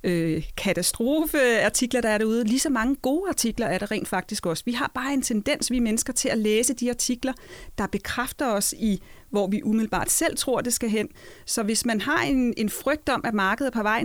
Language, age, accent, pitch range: Danish, 30-49, native, 205-255 Hz